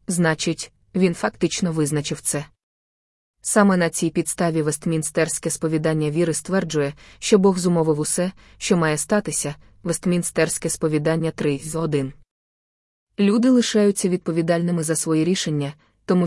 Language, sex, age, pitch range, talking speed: Ukrainian, female, 20-39, 155-180 Hz, 120 wpm